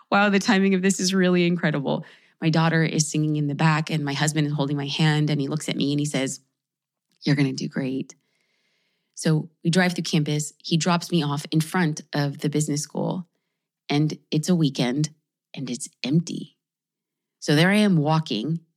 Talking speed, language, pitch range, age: 195 wpm, English, 155-205 Hz, 20-39